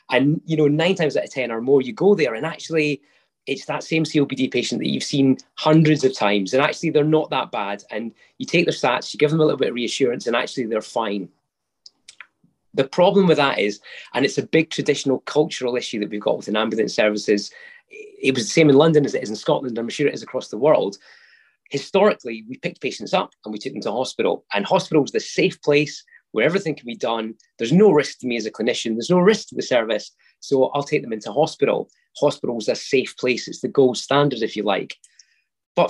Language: English